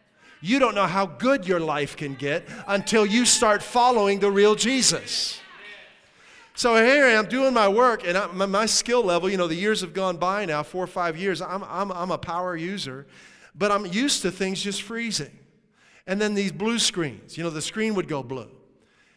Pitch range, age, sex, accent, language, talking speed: 155-210 Hz, 40-59, male, American, English, 200 wpm